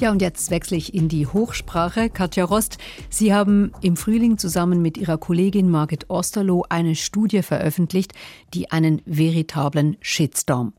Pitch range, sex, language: 160-205 Hz, female, German